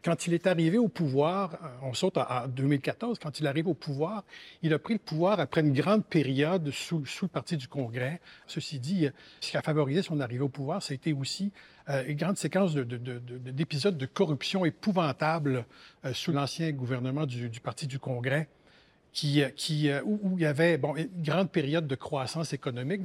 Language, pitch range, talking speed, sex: French, 135-170 Hz, 210 wpm, male